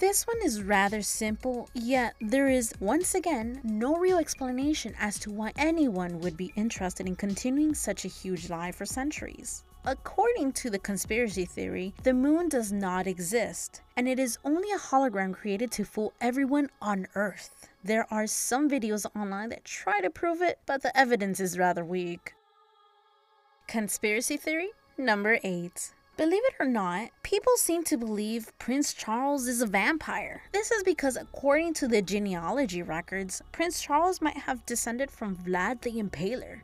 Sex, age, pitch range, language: female, 20-39, 195-285 Hz, English